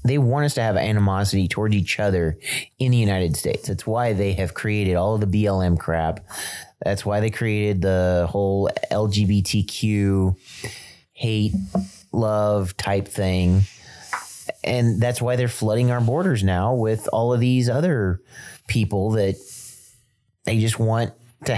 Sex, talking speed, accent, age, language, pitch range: male, 145 wpm, American, 30-49, English, 95-120 Hz